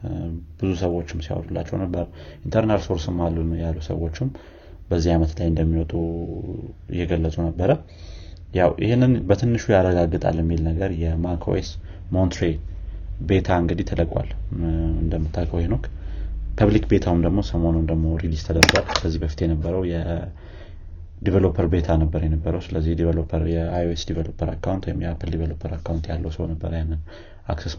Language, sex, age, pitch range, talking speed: Amharic, male, 30-49, 80-90 Hz, 115 wpm